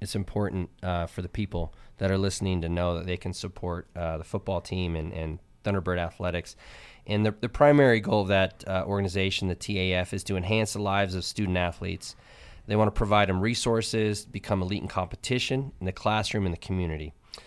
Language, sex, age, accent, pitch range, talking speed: English, male, 20-39, American, 90-110 Hz, 200 wpm